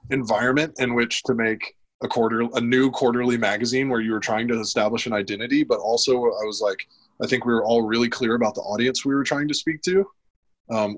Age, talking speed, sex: 20-39, 225 wpm, male